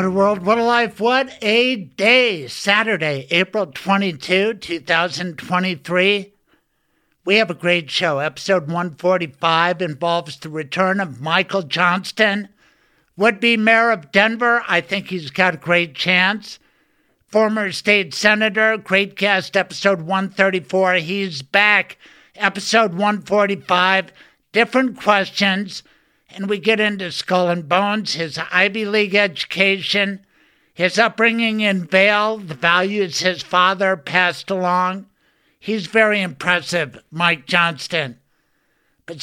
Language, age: English, 60-79